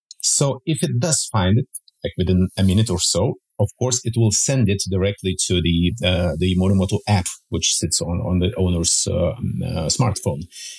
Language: English